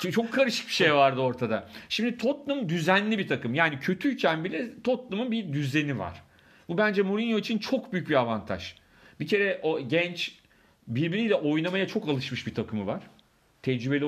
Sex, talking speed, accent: male, 165 wpm, native